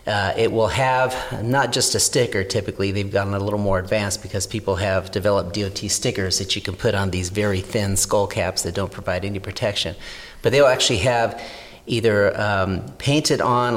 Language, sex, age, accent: English, male, 40-59, American